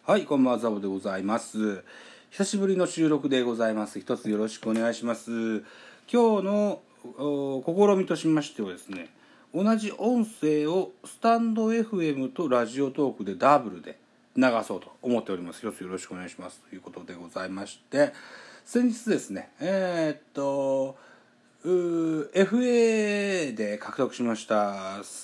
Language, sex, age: Japanese, male, 40-59